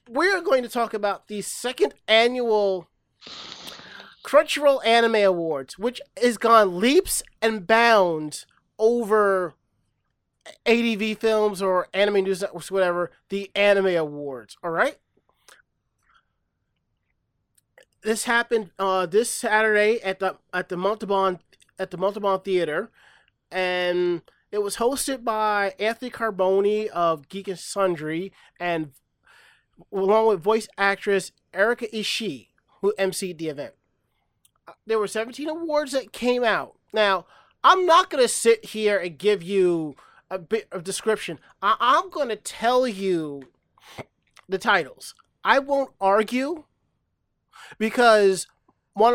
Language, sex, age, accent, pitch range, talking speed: English, male, 30-49, American, 190-230 Hz, 120 wpm